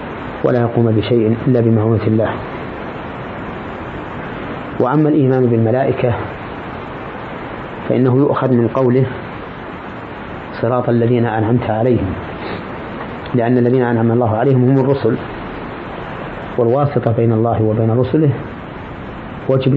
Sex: male